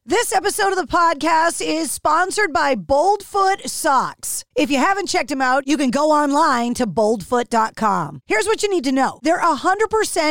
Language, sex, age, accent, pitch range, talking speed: English, female, 40-59, American, 235-345 Hz, 170 wpm